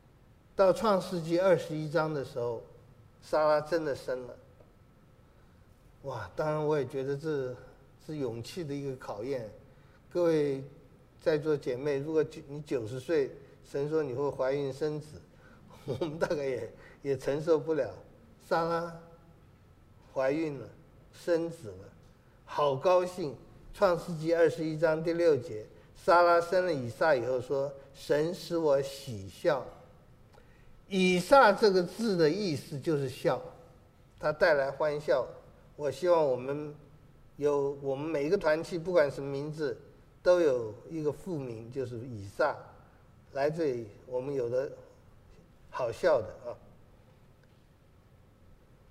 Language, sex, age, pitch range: Chinese, male, 50-69, 125-165 Hz